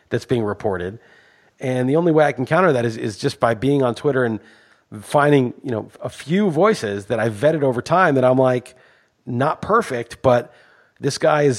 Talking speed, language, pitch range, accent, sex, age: 200 wpm, English, 125-150 Hz, American, male, 30-49